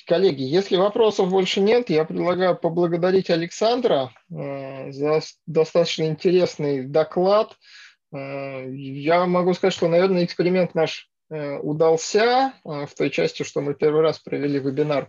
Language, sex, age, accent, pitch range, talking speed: Russian, male, 20-39, native, 145-175 Hz, 120 wpm